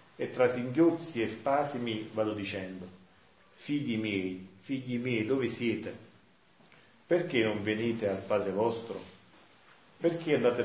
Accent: native